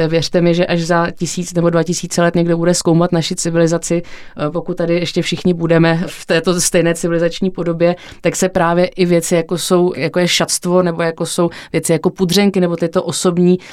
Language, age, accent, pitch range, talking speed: Czech, 30-49, native, 160-180 Hz, 190 wpm